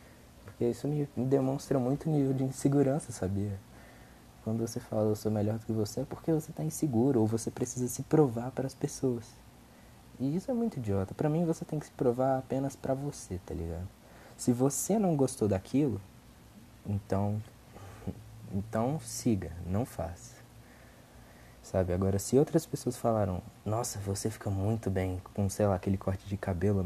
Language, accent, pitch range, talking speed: Portuguese, Brazilian, 100-135 Hz, 170 wpm